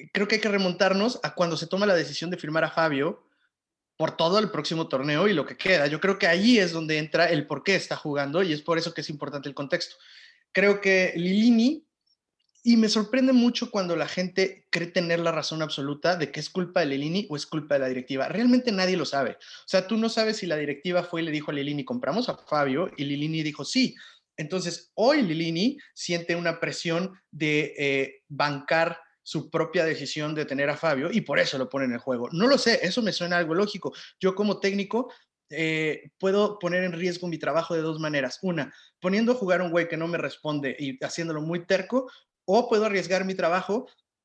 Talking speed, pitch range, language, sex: 220 wpm, 150-205 Hz, Spanish, male